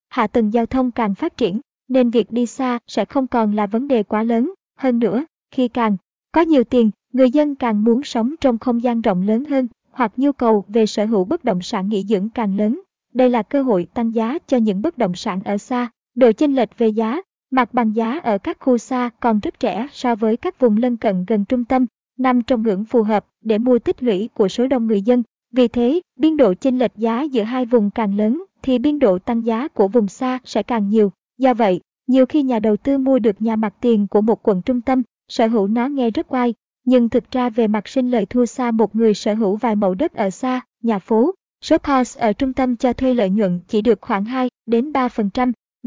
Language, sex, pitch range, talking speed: Vietnamese, male, 220-255 Hz, 235 wpm